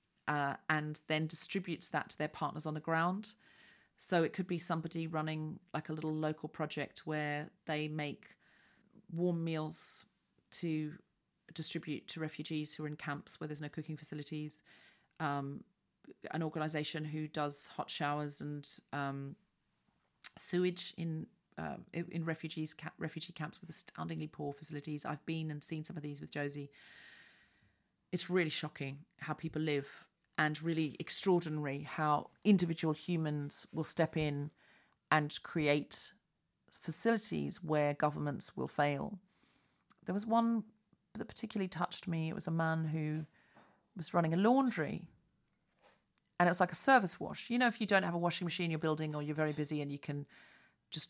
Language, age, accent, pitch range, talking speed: English, 40-59, British, 150-175 Hz, 155 wpm